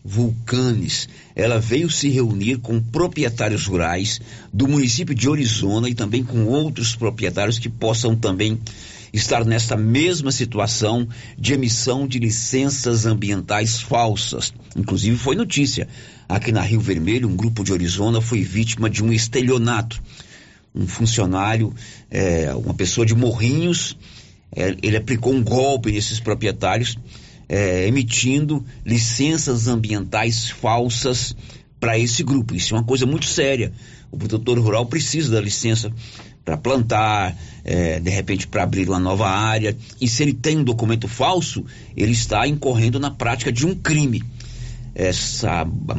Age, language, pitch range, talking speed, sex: 50-69, Portuguese, 110-130 Hz, 140 wpm, male